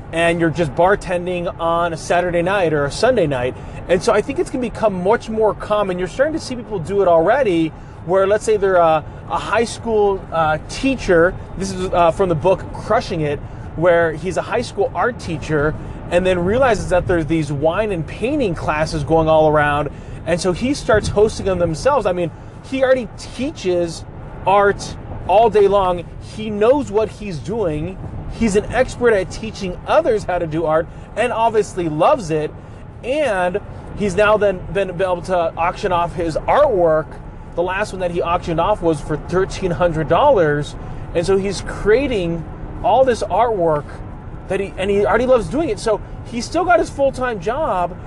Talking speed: 180 wpm